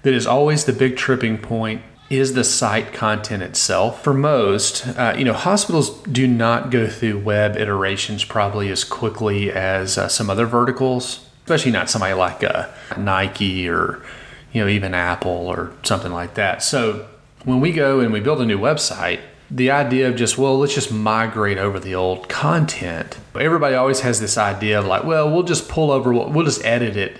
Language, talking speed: English, 185 wpm